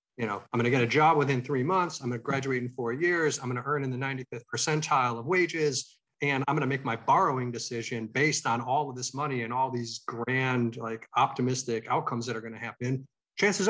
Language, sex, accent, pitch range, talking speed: English, male, American, 115-150 Hz, 240 wpm